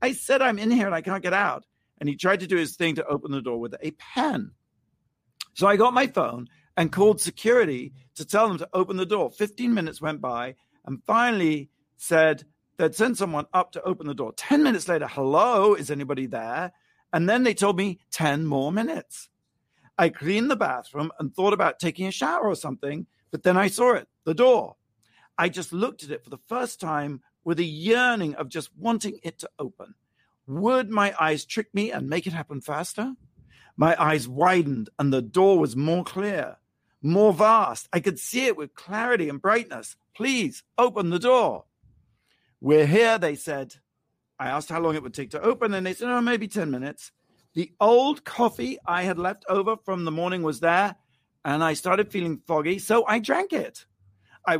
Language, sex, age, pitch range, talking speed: English, male, 50-69, 155-230 Hz, 200 wpm